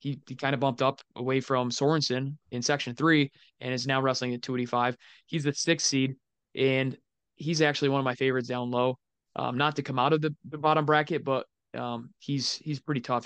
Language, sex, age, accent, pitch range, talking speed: English, male, 20-39, American, 125-145 Hz, 220 wpm